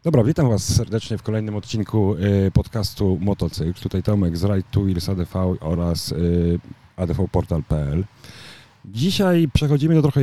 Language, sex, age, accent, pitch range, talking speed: Polish, male, 40-59, native, 100-130 Hz, 125 wpm